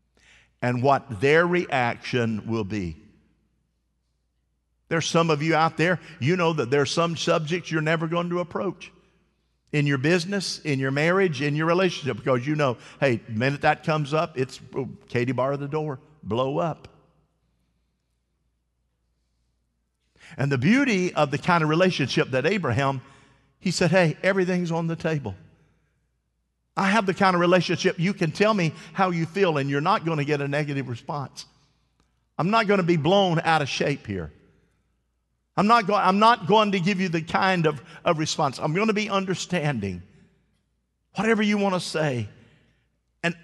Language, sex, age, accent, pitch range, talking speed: English, male, 50-69, American, 130-190 Hz, 170 wpm